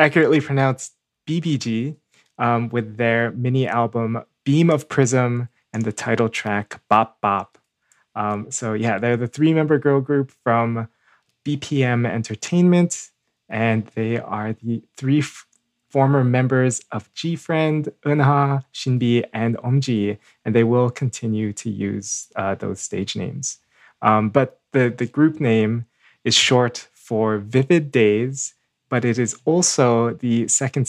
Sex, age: male, 20-39